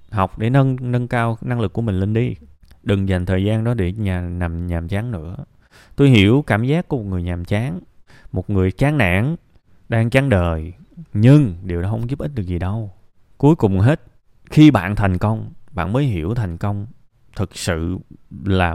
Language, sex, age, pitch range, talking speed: Vietnamese, male, 20-39, 90-120 Hz, 200 wpm